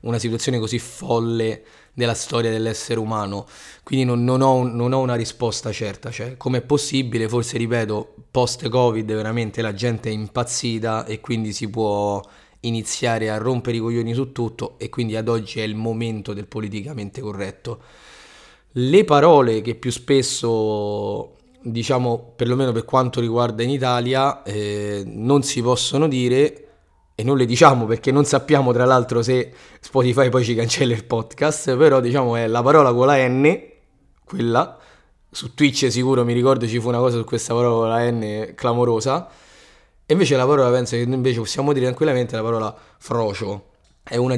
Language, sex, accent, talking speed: Italian, male, native, 170 wpm